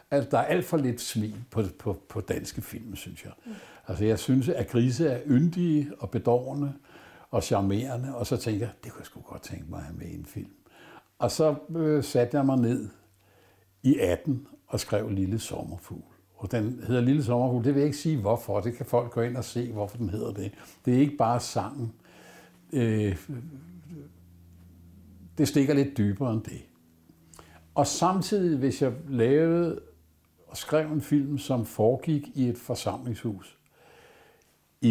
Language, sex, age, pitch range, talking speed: Danish, male, 60-79, 105-140 Hz, 175 wpm